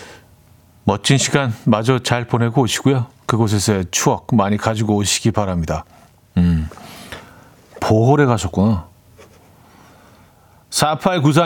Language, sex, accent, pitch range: Korean, male, native, 105-150 Hz